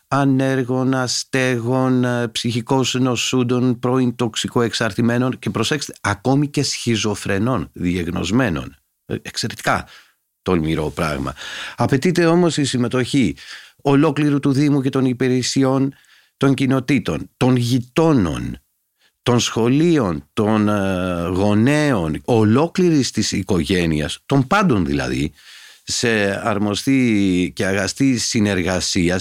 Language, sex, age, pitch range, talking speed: Greek, male, 50-69, 100-130 Hz, 90 wpm